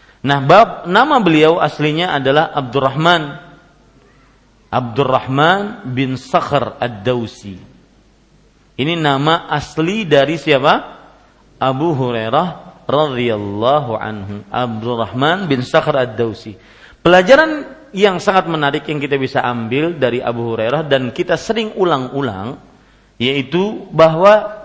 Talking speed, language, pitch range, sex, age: 100 wpm, Malay, 135-180 Hz, male, 40-59